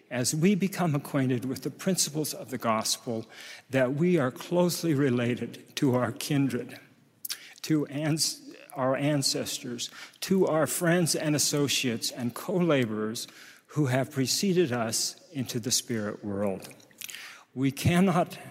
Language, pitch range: English, 130-165 Hz